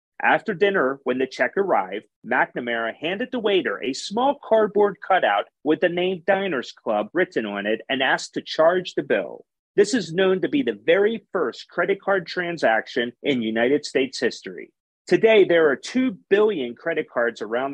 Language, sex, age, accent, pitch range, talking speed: English, male, 40-59, American, 145-205 Hz, 175 wpm